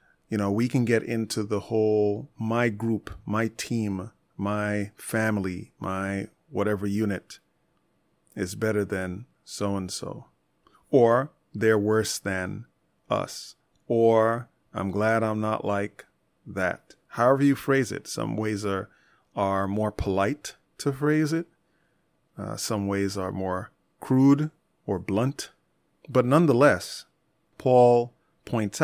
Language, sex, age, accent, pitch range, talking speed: English, male, 30-49, American, 100-120 Hz, 120 wpm